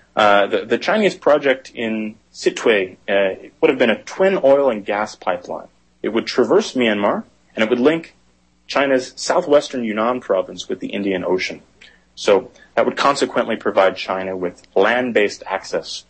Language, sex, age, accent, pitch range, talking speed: English, male, 30-49, American, 90-120 Hz, 155 wpm